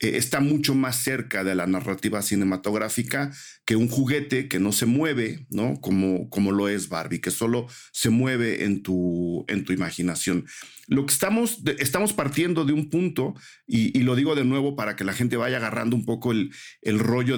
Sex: male